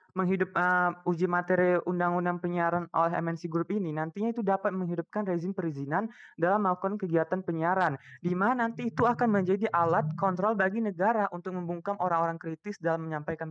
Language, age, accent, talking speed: Indonesian, 20-39, native, 160 wpm